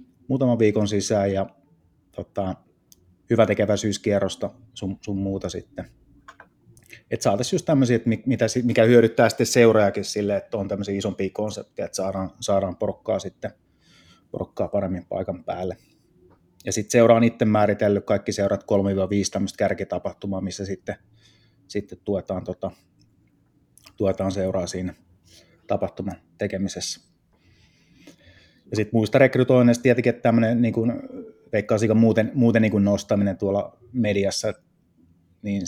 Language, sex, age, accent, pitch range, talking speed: Finnish, male, 30-49, native, 95-110 Hz, 120 wpm